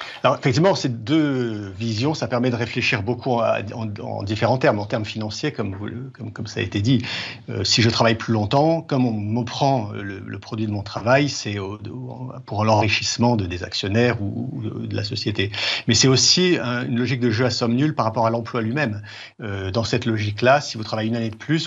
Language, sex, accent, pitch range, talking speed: French, male, French, 105-125 Hz, 225 wpm